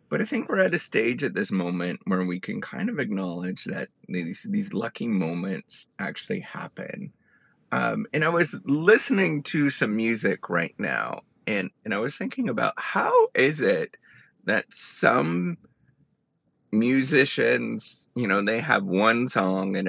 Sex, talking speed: male, 155 wpm